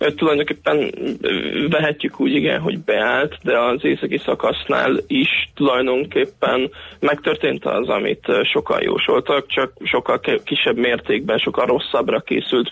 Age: 20-39